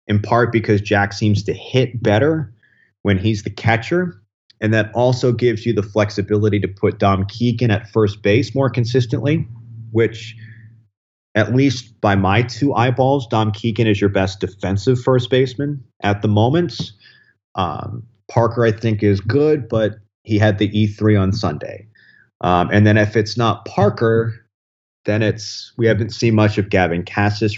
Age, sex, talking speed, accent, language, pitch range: 30-49, male, 165 wpm, American, English, 100-115 Hz